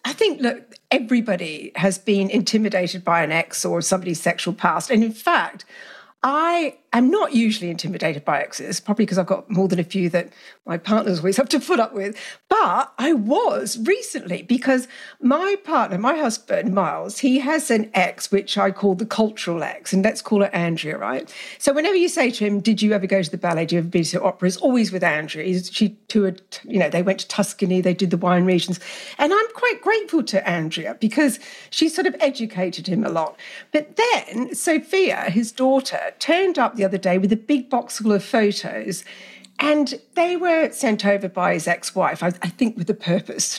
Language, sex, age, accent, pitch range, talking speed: English, female, 50-69, British, 195-310 Hz, 200 wpm